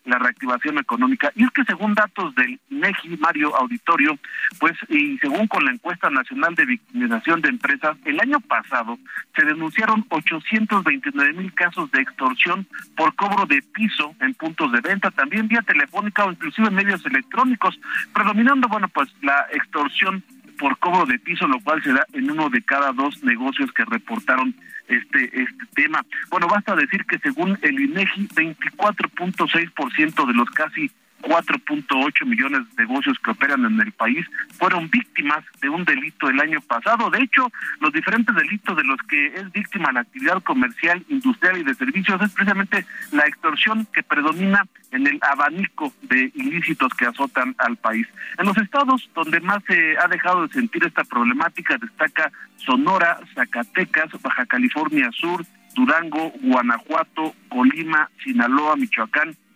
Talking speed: 155 wpm